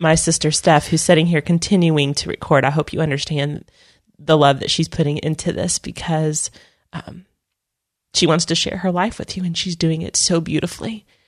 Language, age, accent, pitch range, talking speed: English, 30-49, American, 145-175 Hz, 190 wpm